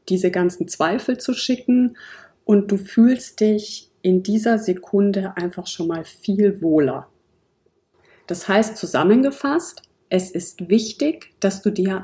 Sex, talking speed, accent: female, 130 wpm, German